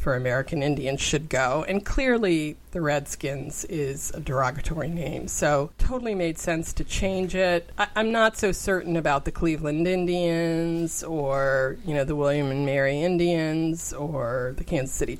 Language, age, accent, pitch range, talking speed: English, 40-59, American, 145-175 Hz, 160 wpm